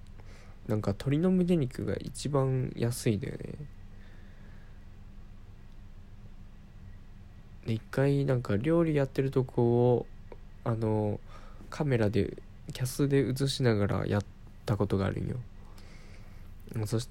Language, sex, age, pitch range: Japanese, male, 20-39, 100-120 Hz